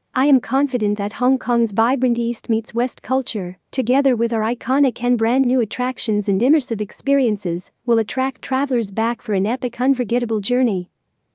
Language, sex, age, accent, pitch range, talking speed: English, female, 40-59, American, 220-260 Hz, 160 wpm